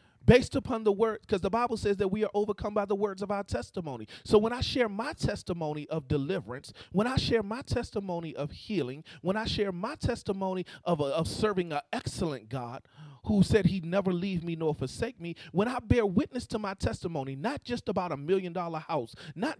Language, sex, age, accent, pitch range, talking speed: English, male, 40-59, American, 170-220 Hz, 205 wpm